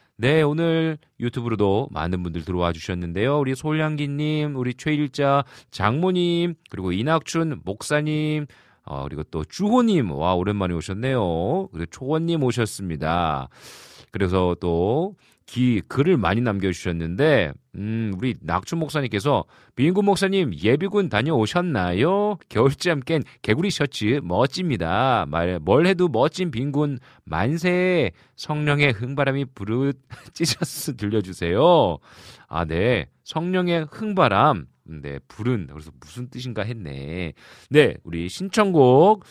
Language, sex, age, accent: Korean, male, 40-59, native